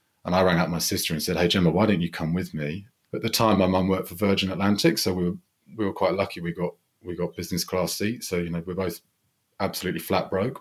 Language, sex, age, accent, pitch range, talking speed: English, male, 30-49, British, 85-100 Hz, 265 wpm